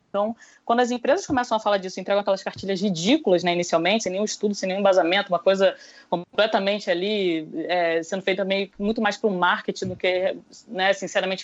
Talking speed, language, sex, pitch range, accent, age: 185 wpm, Portuguese, female, 195-255 Hz, Brazilian, 20-39